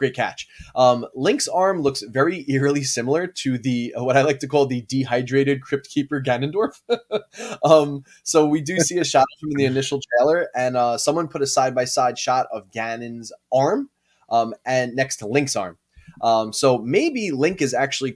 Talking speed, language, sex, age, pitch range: 180 wpm, English, male, 20-39, 115-145 Hz